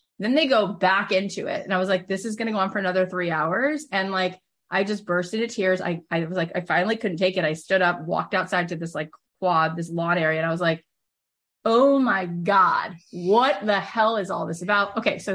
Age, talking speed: 30-49, 250 wpm